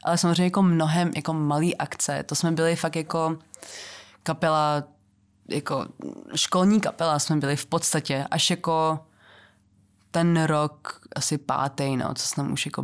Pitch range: 150-175 Hz